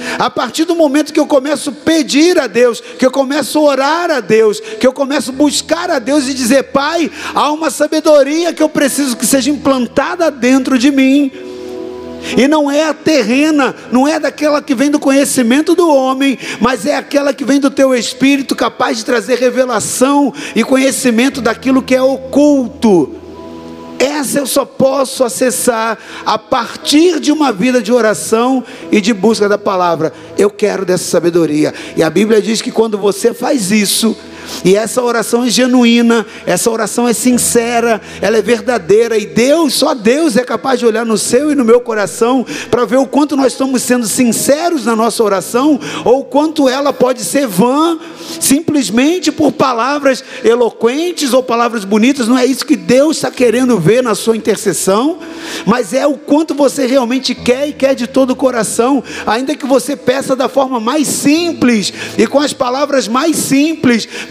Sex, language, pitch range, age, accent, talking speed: male, Portuguese, 230-285 Hz, 50-69, Brazilian, 180 wpm